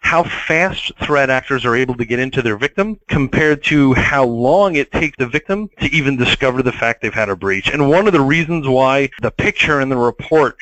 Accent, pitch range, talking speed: American, 120-145 Hz, 220 wpm